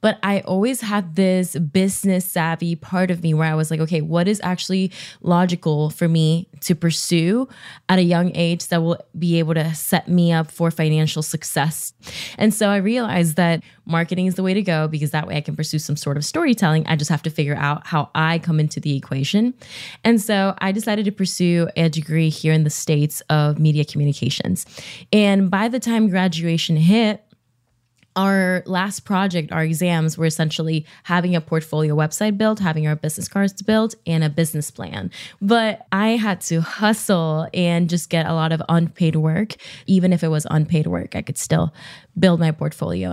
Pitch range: 155-185 Hz